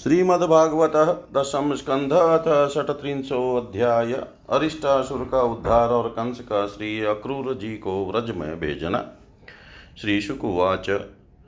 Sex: male